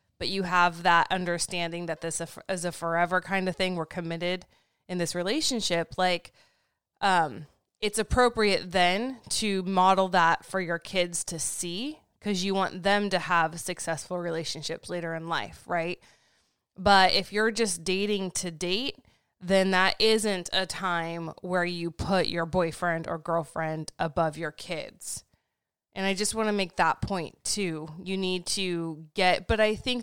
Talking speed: 165 wpm